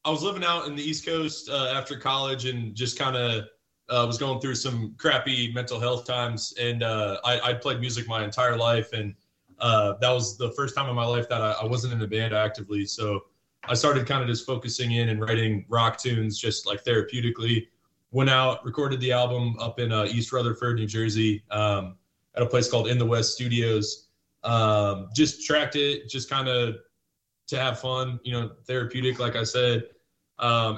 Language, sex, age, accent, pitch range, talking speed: English, male, 20-39, American, 110-130 Hz, 205 wpm